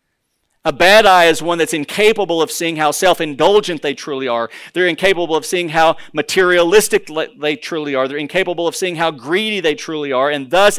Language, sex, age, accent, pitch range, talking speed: English, male, 40-59, American, 125-155 Hz, 190 wpm